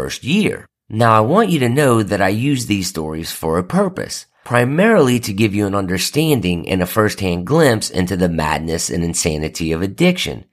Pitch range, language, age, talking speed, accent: 95-160 Hz, English, 40-59, 175 wpm, American